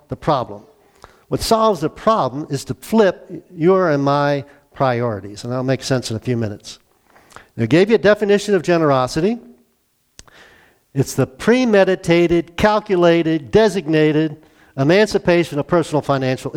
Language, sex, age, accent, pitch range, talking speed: English, male, 50-69, American, 135-175 Hz, 135 wpm